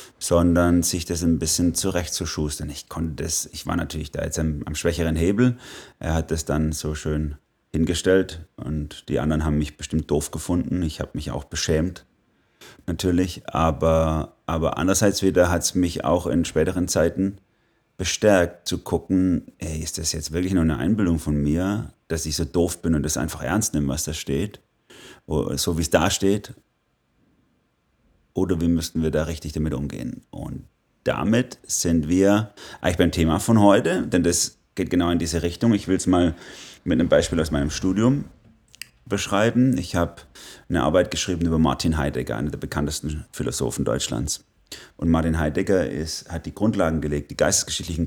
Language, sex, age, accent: English, male, 30-49, German